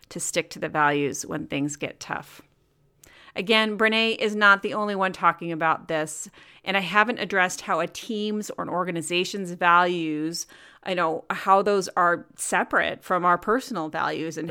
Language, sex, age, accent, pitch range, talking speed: English, female, 30-49, American, 170-205 Hz, 170 wpm